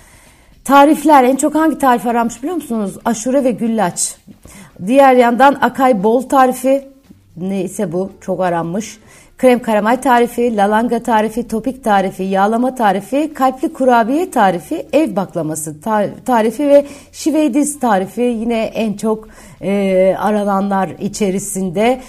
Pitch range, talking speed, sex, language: 195-255 Hz, 120 wpm, female, Turkish